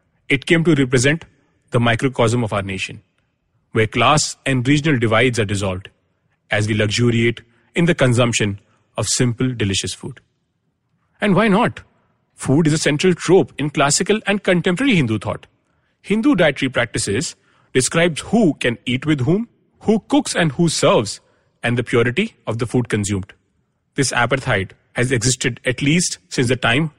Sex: male